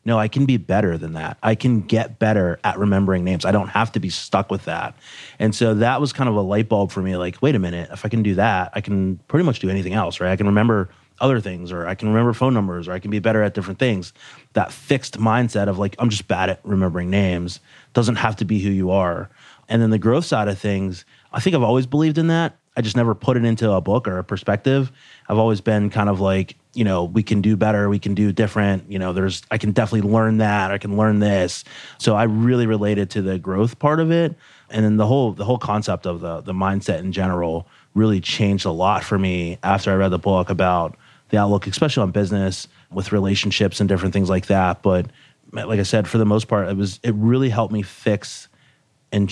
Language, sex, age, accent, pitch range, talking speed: English, male, 30-49, American, 95-115 Hz, 245 wpm